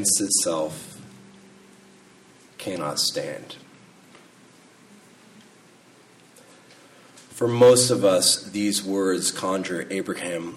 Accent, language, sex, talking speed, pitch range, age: American, English, male, 60 wpm, 100-155 Hz, 40-59